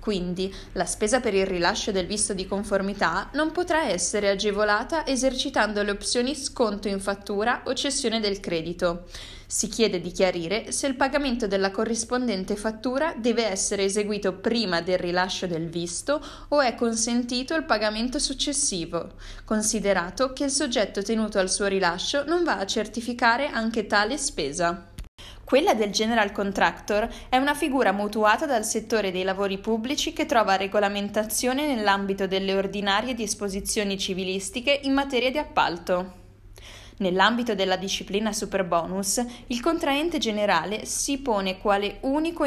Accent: native